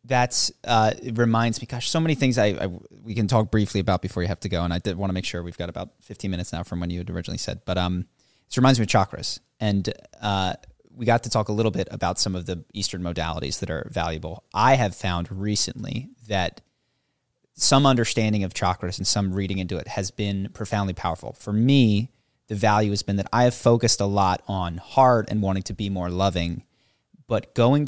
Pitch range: 90-115 Hz